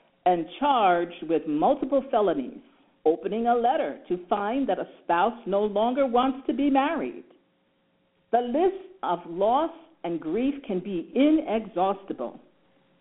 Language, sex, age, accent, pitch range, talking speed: English, female, 50-69, American, 180-275 Hz, 130 wpm